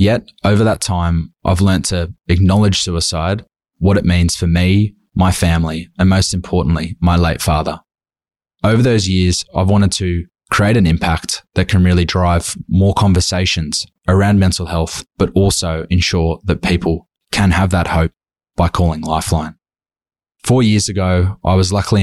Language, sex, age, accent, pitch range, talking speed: English, male, 20-39, Australian, 85-100 Hz, 160 wpm